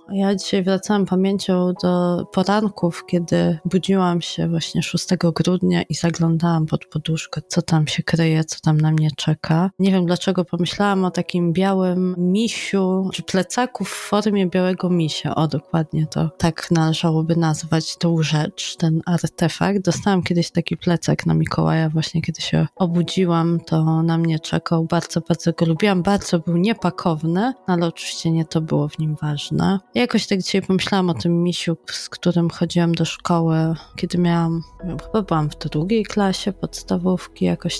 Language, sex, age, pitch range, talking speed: Polish, female, 20-39, 165-190 Hz, 155 wpm